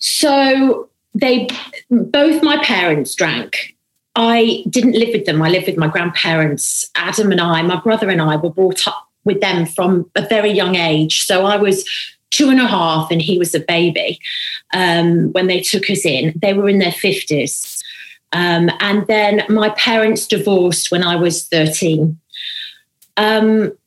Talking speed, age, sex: 165 wpm, 30-49, female